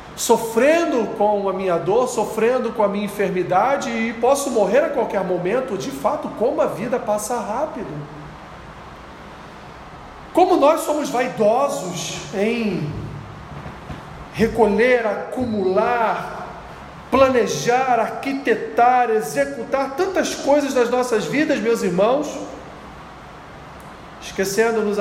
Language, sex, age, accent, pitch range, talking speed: Portuguese, male, 40-59, Brazilian, 180-235 Hz, 100 wpm